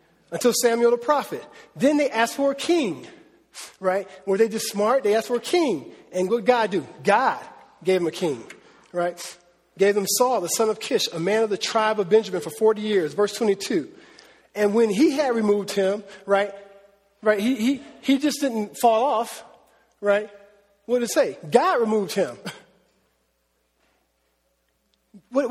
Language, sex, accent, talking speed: English, male, American, 175 wpm